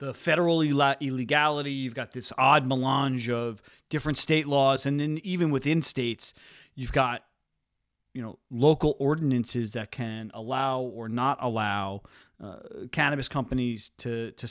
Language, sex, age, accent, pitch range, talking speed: English, male, 40-59, American, 120-140 Hz, 140 wpm